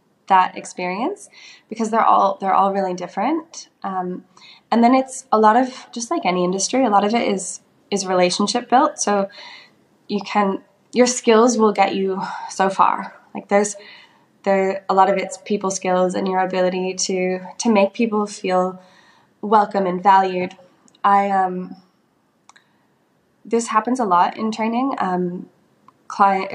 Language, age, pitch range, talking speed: English, 10-29, 185-230 Hz, 155 wpm